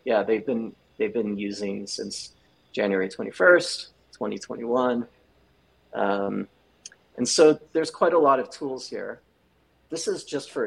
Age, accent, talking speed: 30-49, American, 135 wpm